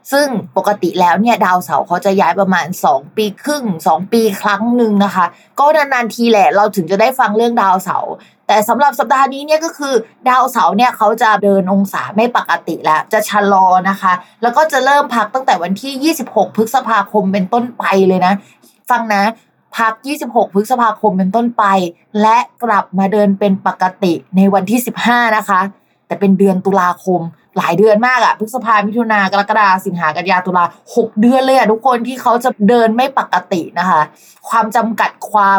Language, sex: Thai, female